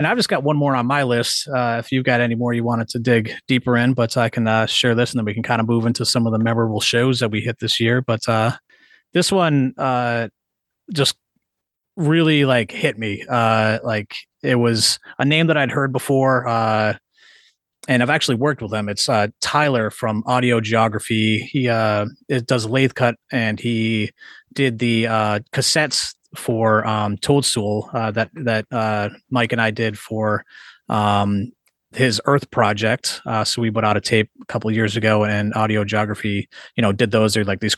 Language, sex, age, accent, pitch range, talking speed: English, male, 30-49, American, 110-125 Hz, 200 wpm